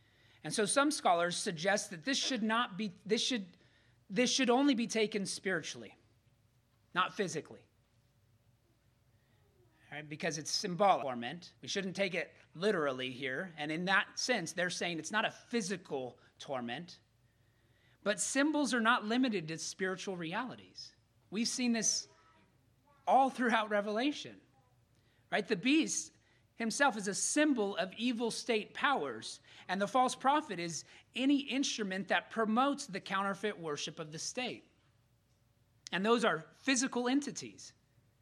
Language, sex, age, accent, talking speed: English, male, 30-49, American, 135 wpm